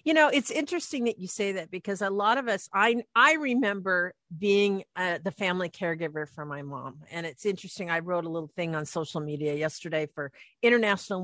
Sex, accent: female, American